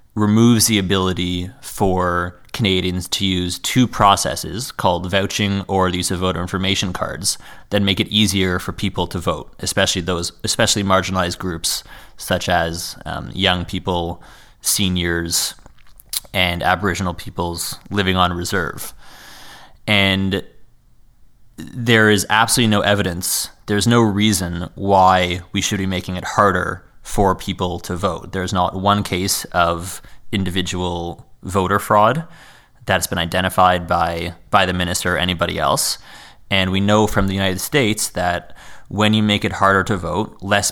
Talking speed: 145 wpm